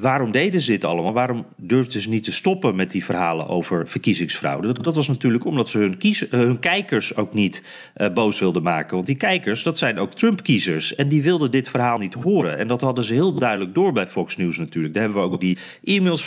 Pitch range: 100-135 Hz